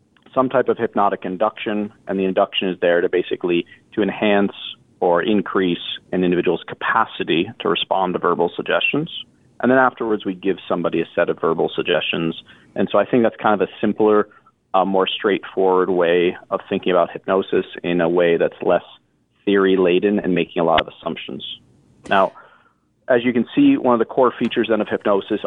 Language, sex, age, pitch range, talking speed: English, male, 30-49, 95-125 Hz, 180 wpm